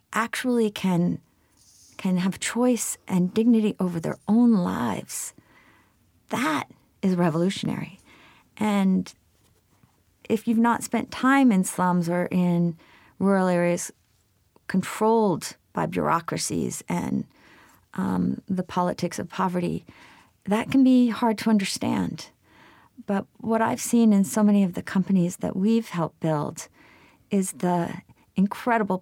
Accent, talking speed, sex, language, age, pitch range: American, 120 wpm, female, English, 40-59, 175-215 Hz